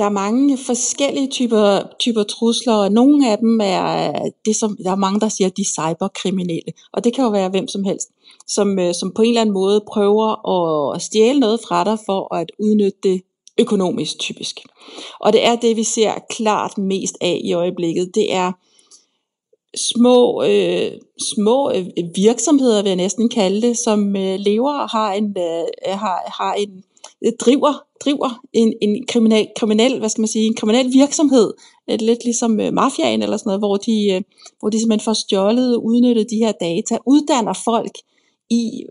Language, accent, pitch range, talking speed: Danish, native, 195-235 Hz, 175 wpm